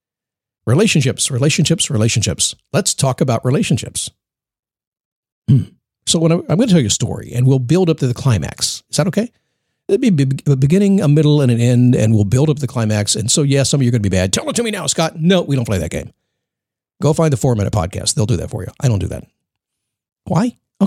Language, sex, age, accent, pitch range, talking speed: English, male, 50-69, American, 115-165 Hz, 235 wpm